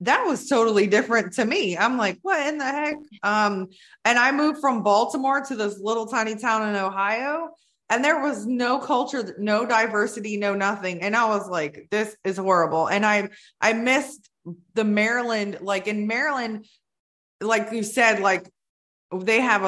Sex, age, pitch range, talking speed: female, 20-39, 185-230 Hz, 170 wpm